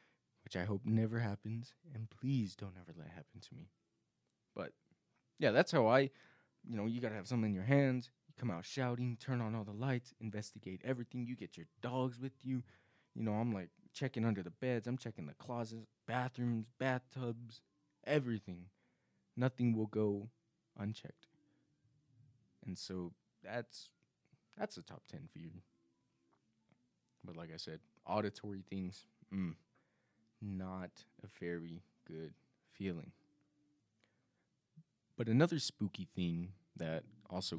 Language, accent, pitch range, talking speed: English, American, 90-125 Hz, 145 wpm